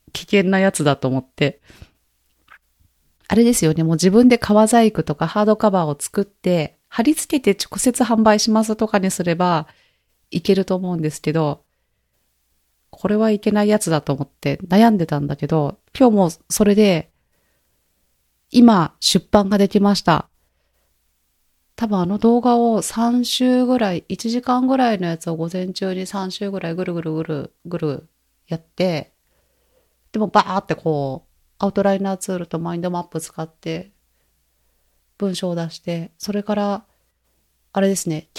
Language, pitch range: Japanese, 150-210 Hz